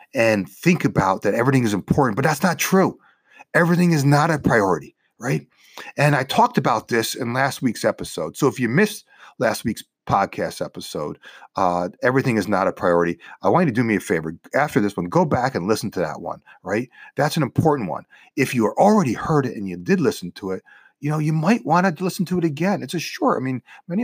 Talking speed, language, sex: 225 wpm, English, male